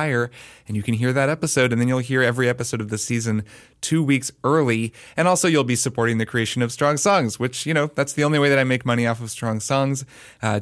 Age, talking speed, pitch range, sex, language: 20-39, 250 wpm, 115-135 Hz, male, English